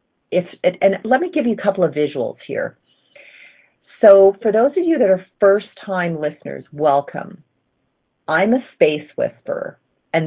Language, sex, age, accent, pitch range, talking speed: English, female, 40-59, American, 140-195 Hz, 150 wpm